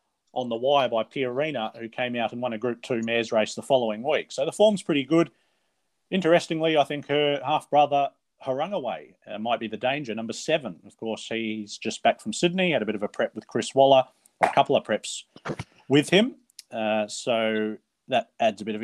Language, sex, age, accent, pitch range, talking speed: English, male, 30-49, Australian, 110-145 Hz, 210 wpm